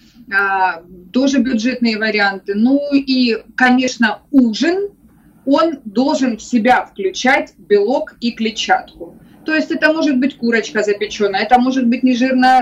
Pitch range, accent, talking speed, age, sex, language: 210-265 Hz, native, 125 wpm, 30-49, female, Russian